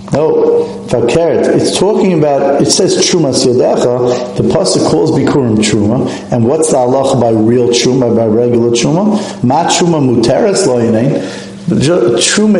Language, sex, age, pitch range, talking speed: English, male, 50-69, 120-165 Hz, 140 wpm